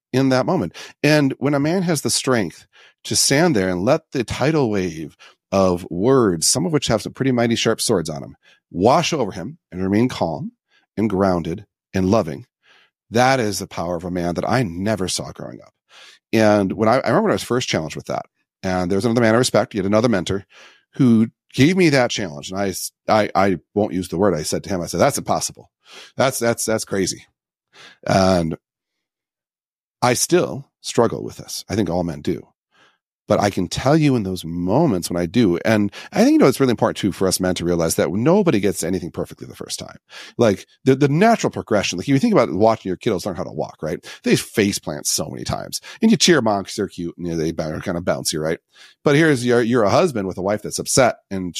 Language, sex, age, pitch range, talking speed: English, male, 40-59, 90-125 Hz, 230 wpm